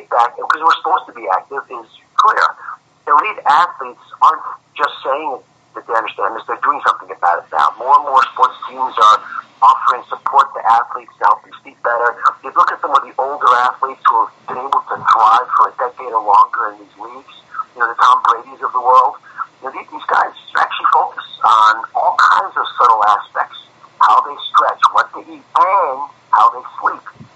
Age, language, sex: 50-69, English, male